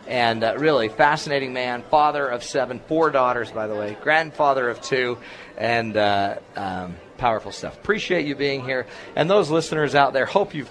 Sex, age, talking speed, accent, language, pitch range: male, 40-59, 180 wpm, American, English, 115-140 Hz